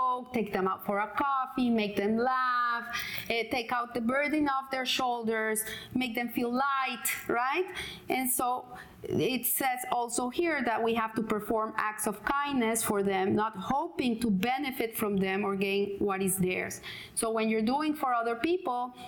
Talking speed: 175 wpm